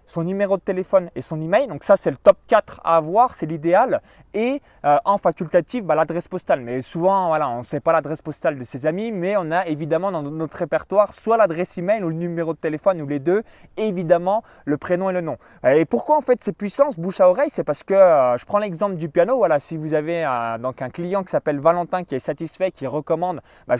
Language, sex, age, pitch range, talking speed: French, male, 20-39, 155-205 Hz, 240 wpm